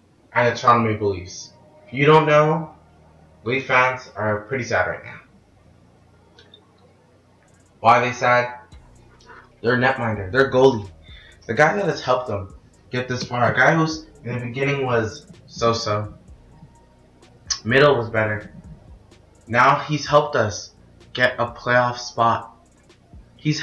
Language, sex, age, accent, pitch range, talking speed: English, male, 20-39, American, 105-140 Hz, 135 wpm